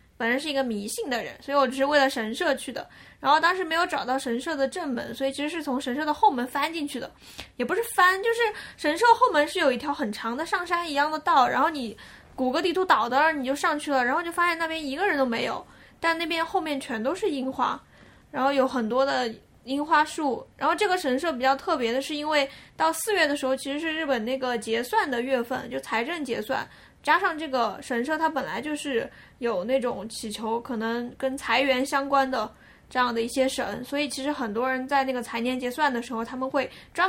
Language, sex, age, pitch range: Chinese, female, 10-29, 240-295 Hz